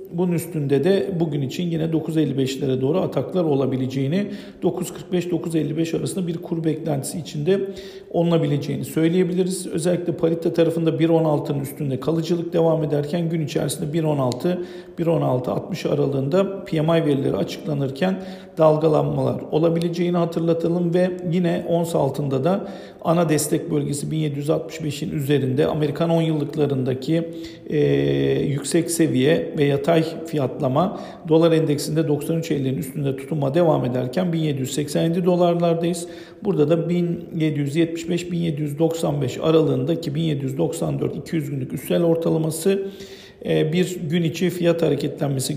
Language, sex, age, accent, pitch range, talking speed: Turkish, male, 50-69, native, 150-180 Hz, 105 wpm